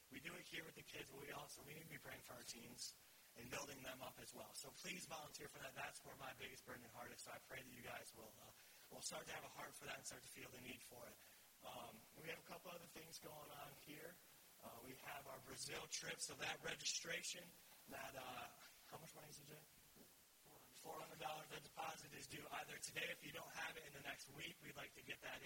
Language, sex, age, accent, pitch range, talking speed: English, male, 30-49, American, 130-155 Hz, 260 wpm